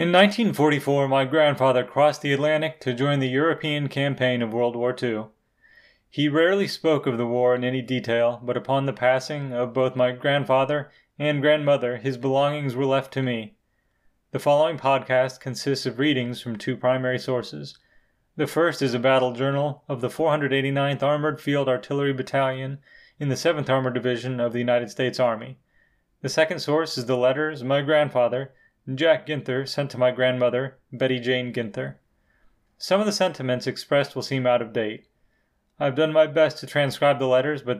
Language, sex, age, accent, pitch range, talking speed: English, male, 30-49, American, 125-145 Hz, 175 wpm